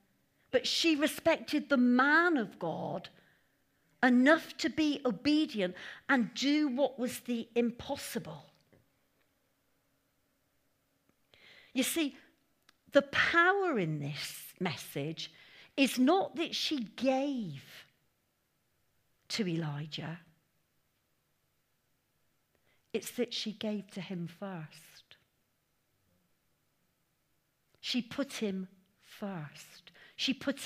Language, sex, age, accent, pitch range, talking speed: English, female, 50-69, British, 190-260 Hz, 85 wpm